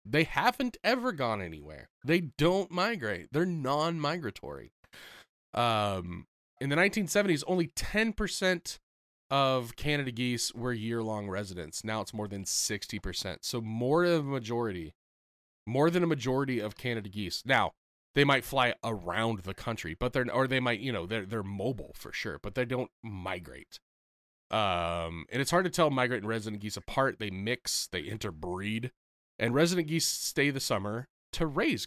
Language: English